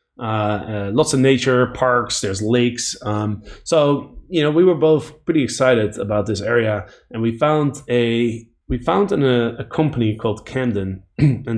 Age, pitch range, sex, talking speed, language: 20-39, 105-130 Hz, male, 155 wpm, English